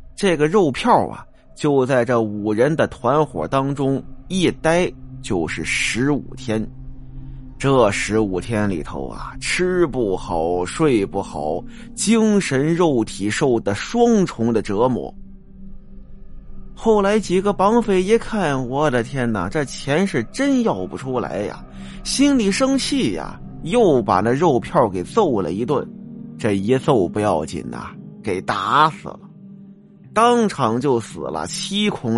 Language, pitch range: Chinese, 120-200 Hz